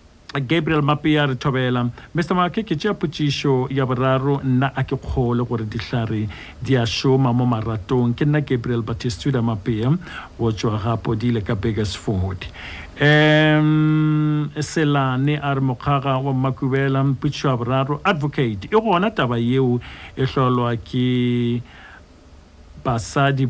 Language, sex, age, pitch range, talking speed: English, male, 60-79, 115-140 Hz, 110 wpm